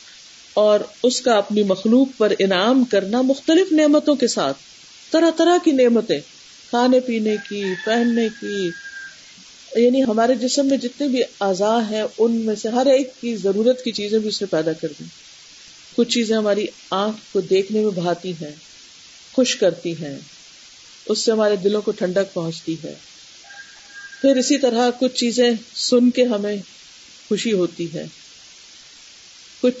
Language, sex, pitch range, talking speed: Urdu, female, 195-255 Hz, 150 wpm